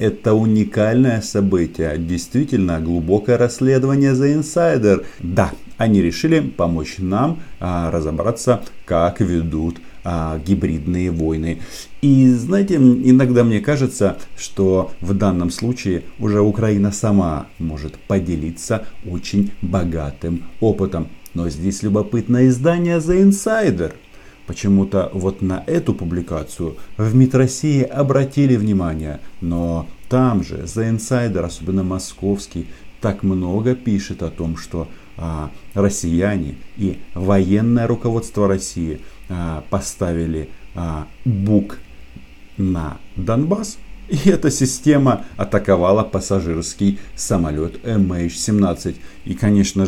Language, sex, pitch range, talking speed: Russian, male, 85-115 Hz, 100 wpm